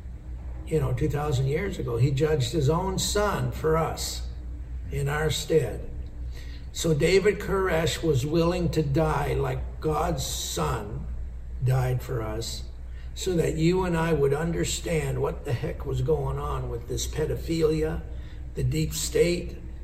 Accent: American